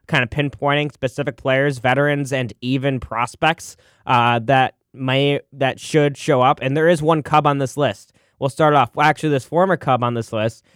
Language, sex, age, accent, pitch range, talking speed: English, male, 20-39, American, 125-150 Hz, 195 wpm